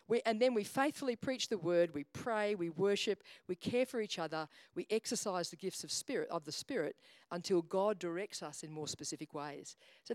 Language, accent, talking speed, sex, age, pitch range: English, Australian, 205 wpm, female, 50-69, 165-225 Hz